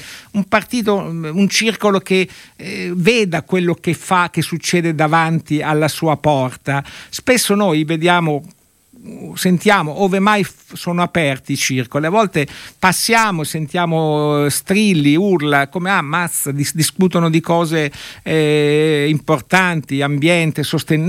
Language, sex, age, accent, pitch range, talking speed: Italian, male, 60-79, native, 150-195 Hz, 130 wpm